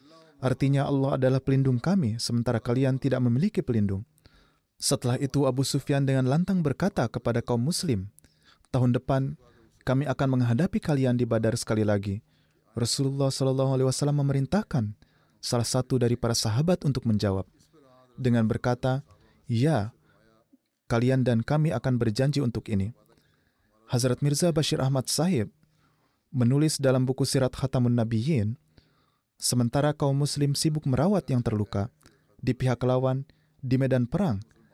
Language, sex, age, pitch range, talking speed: Indonesian, male, 20-39, 115-140 Hz, 130 wpm